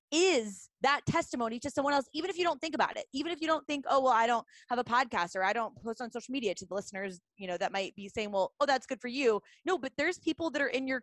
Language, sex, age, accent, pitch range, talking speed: English, female, 20-39, American, 210-290 Hz, 300 wpm